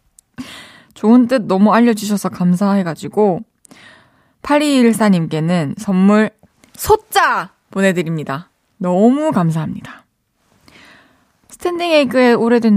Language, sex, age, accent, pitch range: Korean, female, 20-39, native, 180-250 Hz